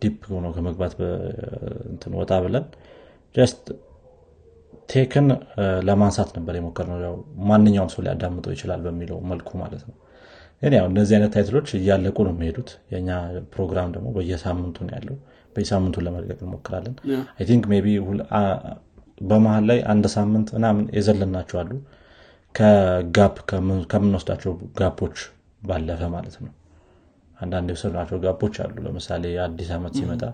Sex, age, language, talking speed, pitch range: male, 30-49, Amharic, 85 wpm, 90-105 Hz